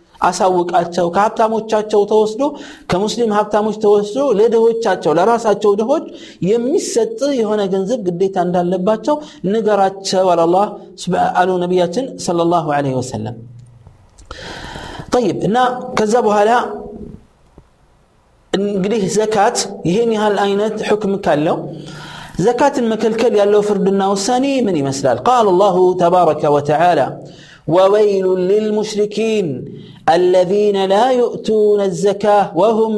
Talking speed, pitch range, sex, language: 85 wpm, 180-225 Hz, male, Amharic